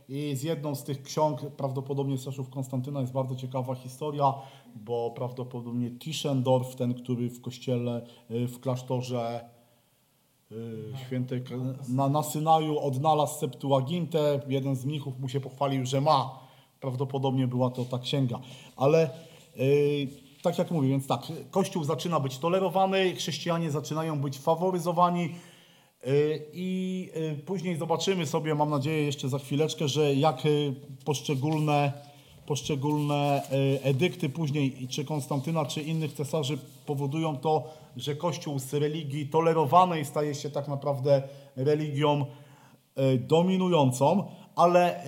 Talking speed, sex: 115 wpm, male